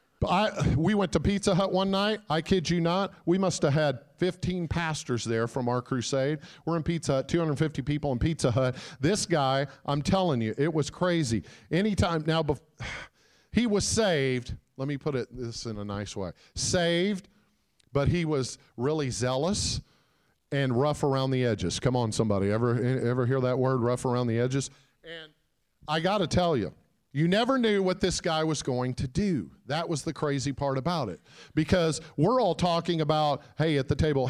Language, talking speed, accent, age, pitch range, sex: English, 190 wpm, American, 50-69, 125-165 Hz, male